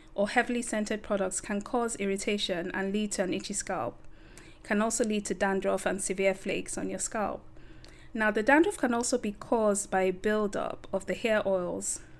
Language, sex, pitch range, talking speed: English, female, 185-215 Hz, 190 wpm